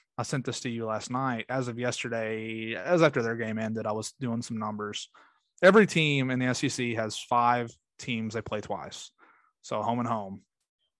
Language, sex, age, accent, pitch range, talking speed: English, male, 20-39, American, 115-140 Hz, 190 wpm